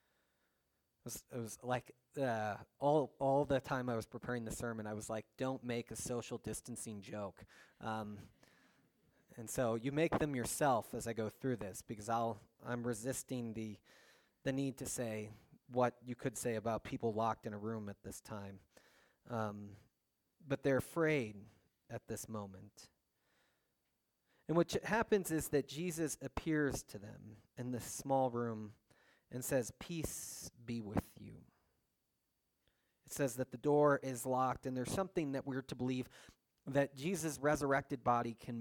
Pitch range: 115-140 Hz